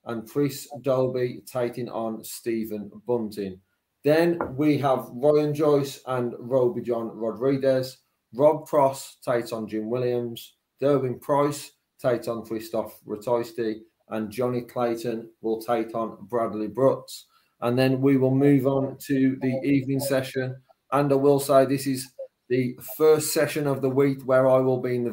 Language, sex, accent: English, male, British